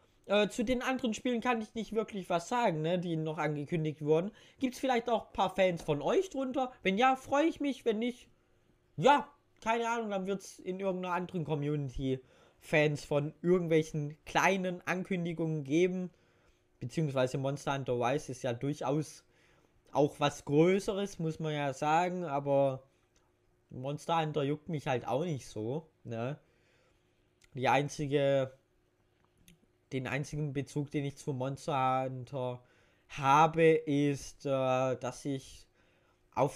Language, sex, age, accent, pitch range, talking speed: German, male, 20-39, German, 130-170 Hz, 145 wpm